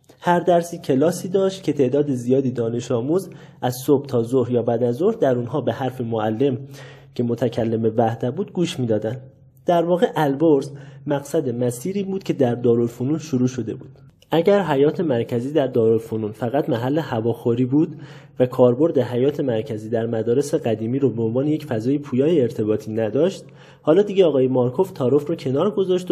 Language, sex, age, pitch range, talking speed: Persian, male, 30-49, 120-155 Hz, 165 wpm